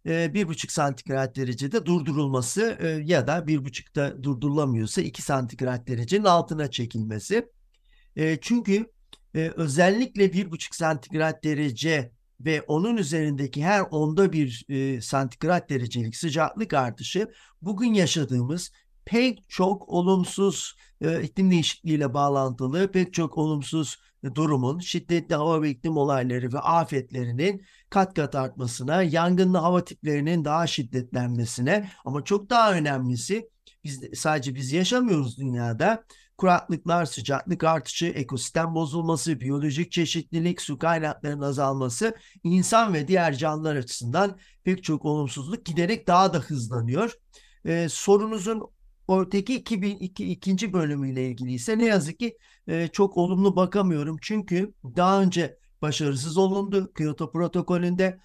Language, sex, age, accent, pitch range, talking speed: Turkish, male, 60-79, native, 140-185 Hz, 115 wpm